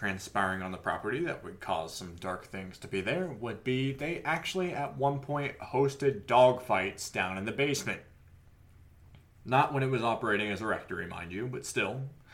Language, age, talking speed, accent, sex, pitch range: English, 20-39, 190 wpm, American, male, 105-135 Hz